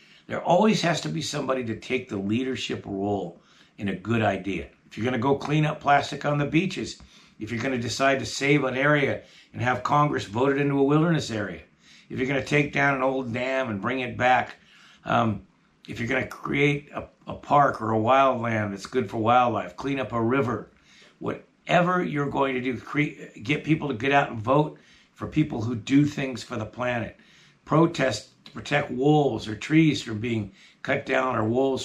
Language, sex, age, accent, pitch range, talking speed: English, male, 60-79, American, 110-145 Hz, 205 wpm